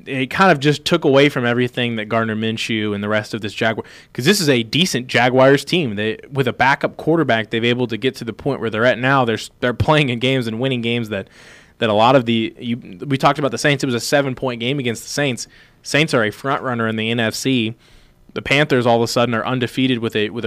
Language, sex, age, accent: English, male, 20-39, American